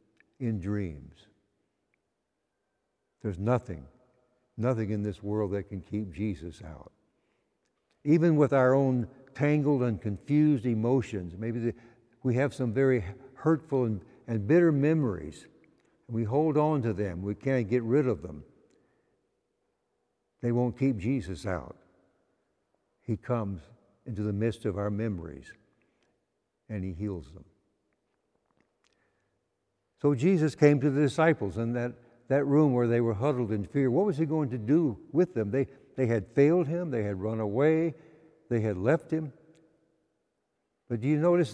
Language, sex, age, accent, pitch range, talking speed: English, male, 60-79, American, 105-145 Hz, 145 wpm